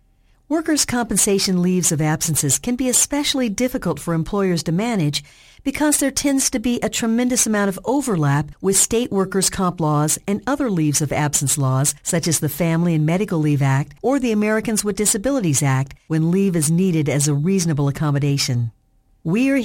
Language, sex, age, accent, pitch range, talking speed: English, female, 50-69, American, 155-235 Hz, 175 wpm